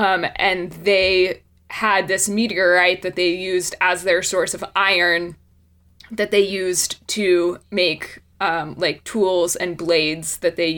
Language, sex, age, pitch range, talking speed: English, female, 20-39, 180-210 Hz, 145 wpm